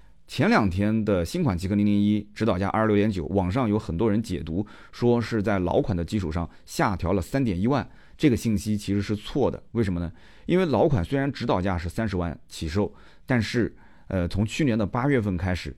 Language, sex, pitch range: Chinese, male, 90-115 Hz